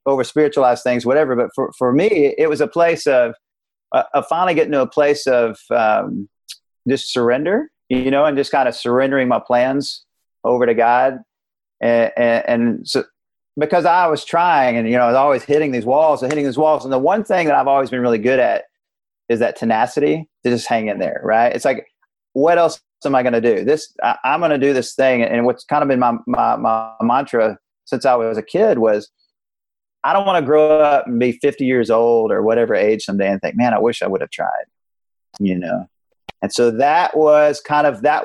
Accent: American